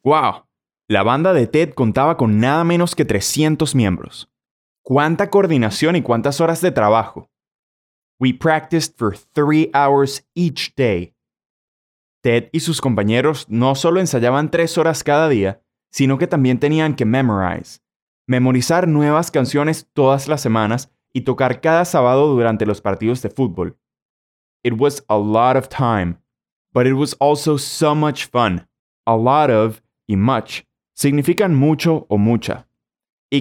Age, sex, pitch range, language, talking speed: 20-39, male, 110-155 Hz, Spanish, 145 wpm